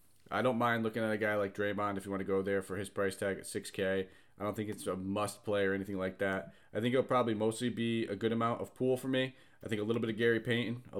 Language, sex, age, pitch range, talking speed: English, male, 30-49, 95-115 Hz, 295 wpm